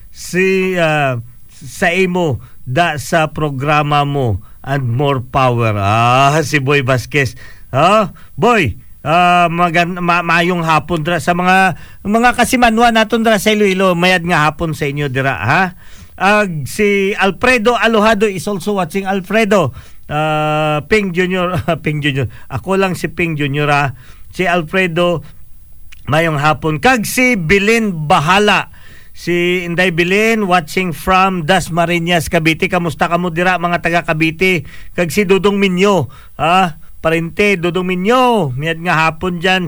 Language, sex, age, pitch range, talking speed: Filipino, male, 50-69, 150-195 Hz, 130 wpm